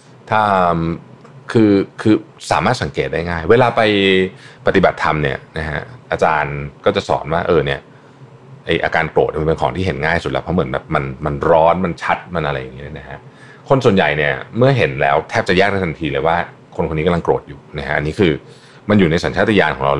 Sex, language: male, Thai